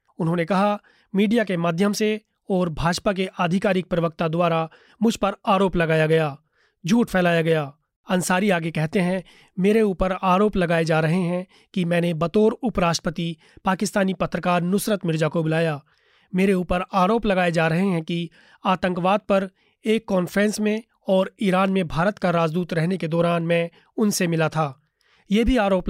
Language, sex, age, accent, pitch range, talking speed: Hindi, male, 30-49, native, 165-195 Hz, 160 wpm